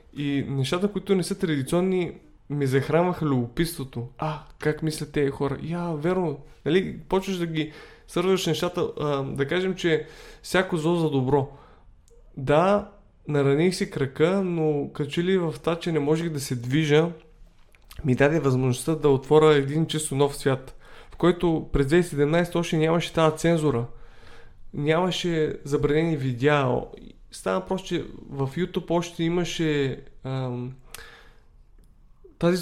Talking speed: 140 wpm